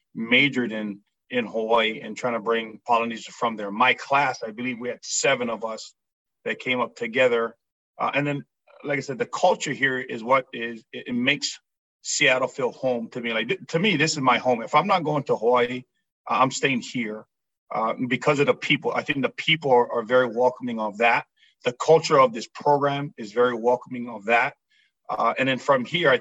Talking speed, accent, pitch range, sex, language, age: 210 wpm, American, 120-140 Hz, male, English, 40-59